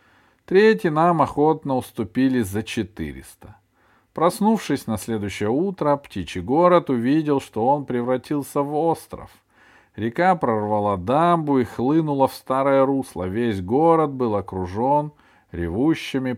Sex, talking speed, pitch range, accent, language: male, 115 wpm, 105-145 Hz, native, Russian